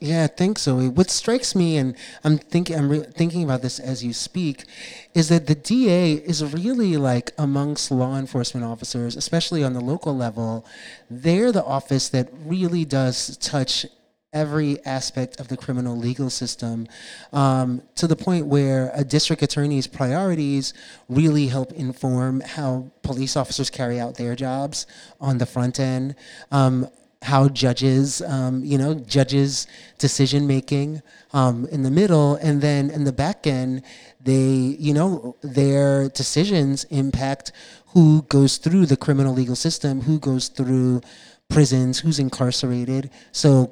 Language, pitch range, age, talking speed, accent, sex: English, 130-155 Hz, 30-49, 150 wpm, American, male